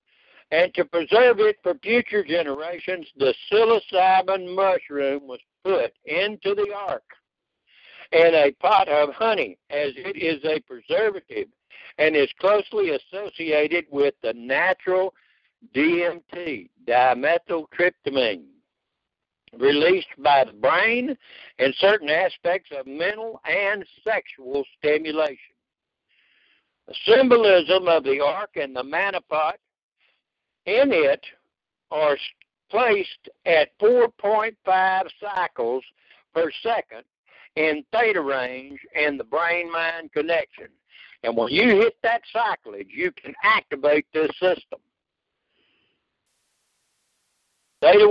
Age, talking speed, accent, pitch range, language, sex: 60-79, 100 wpm, American, 155-225 Hz, English, male